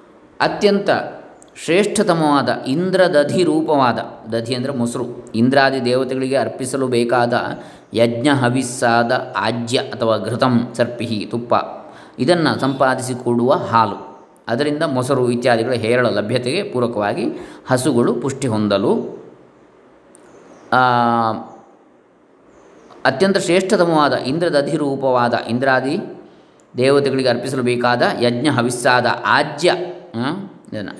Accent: native